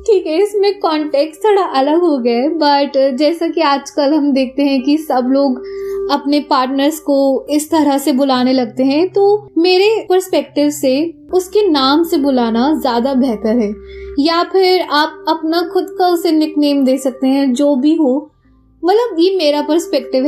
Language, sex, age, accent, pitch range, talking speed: Hindi, female, 20-39, native, 265-325 Hz, 165 wpm